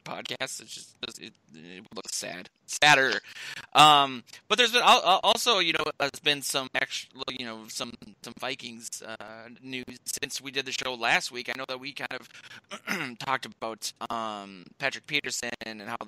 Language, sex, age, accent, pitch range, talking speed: English, male, 20-39, American, 110-125 Hz, 175 wpm